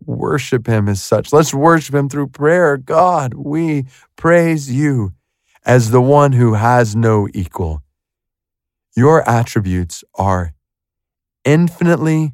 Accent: American